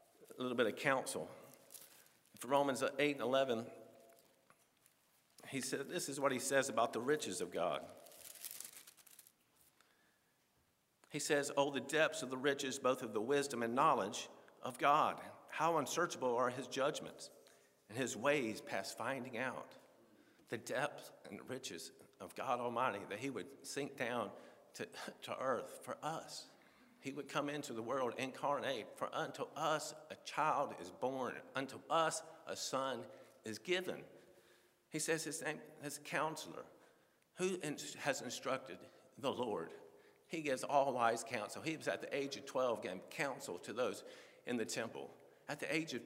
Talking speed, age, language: 155 wpm, 50-69, English